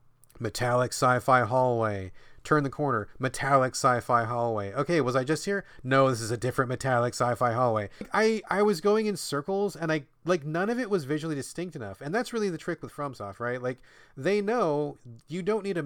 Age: 30-49